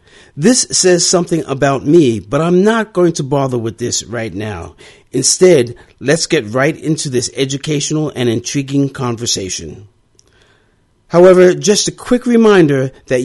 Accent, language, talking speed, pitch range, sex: American, English, 140 wpm, 120-165 Hz, male